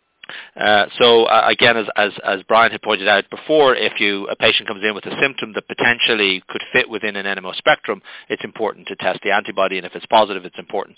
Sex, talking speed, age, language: male, 225 wpm, 40-59, English